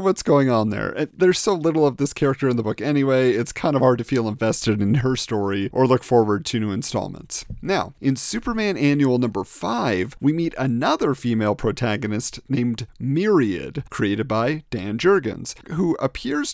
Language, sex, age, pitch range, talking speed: English, male, 40-59, 120-160 Hz, 180 wpm